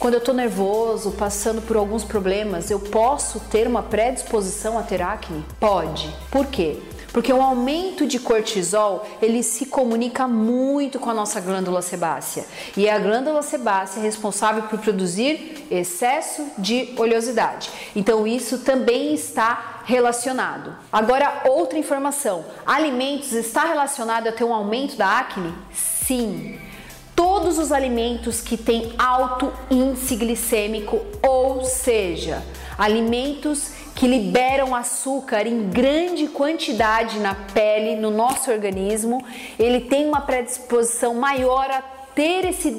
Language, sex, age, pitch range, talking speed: Portuguese, female, 30-49, 215-265 Hz, 130 wpm